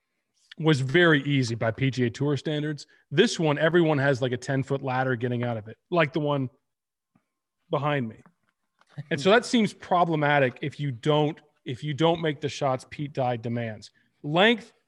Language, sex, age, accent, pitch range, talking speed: English, male, 40-59, American, 130-165 Hz, 175 wpm